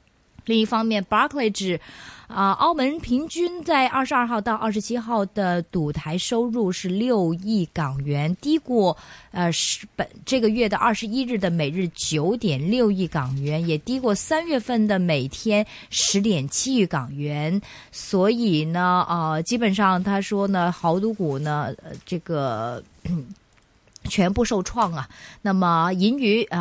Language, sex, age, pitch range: Chinese, female, 20-39, 165-220 Hz